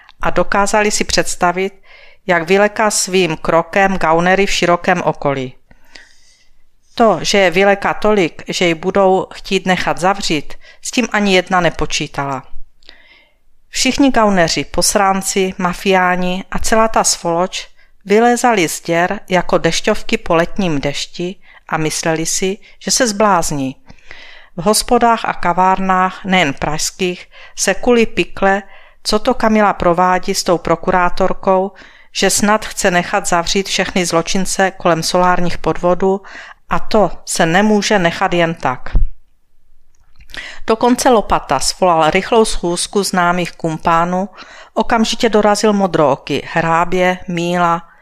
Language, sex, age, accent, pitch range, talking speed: Czech, female, 50-69, native, 170-200 Hz, 120 wpm